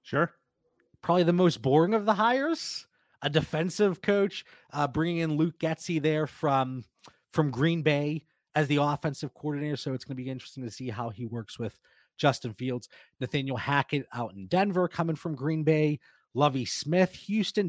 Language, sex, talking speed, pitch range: English, male, 175 wpm, 125-160 Hz